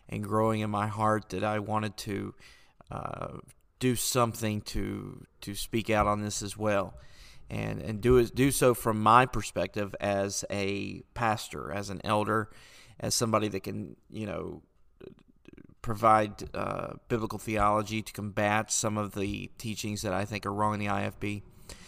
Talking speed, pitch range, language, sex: 160 wpm, 105-120 Hz, English, male